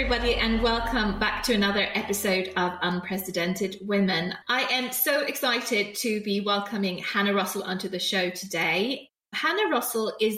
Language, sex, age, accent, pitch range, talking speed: English, female, 30-49, British, 185-240 Hz, 150 wpm